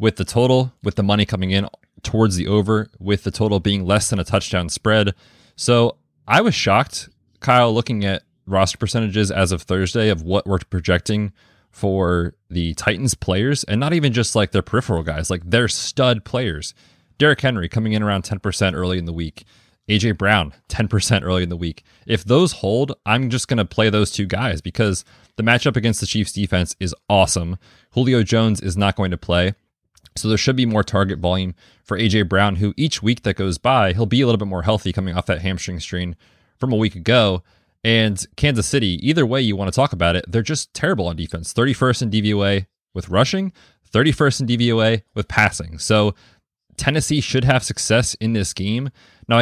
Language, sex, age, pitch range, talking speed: English, male, 30-49, 95-120 Hz, 200 wpm